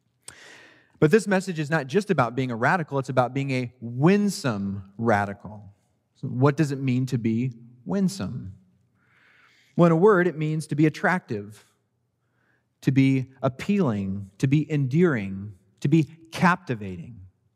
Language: English